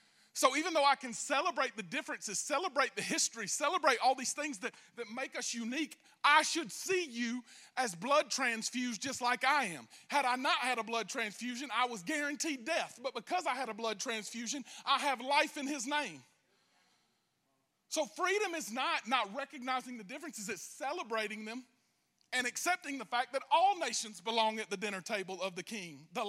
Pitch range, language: 210-270 Hz, English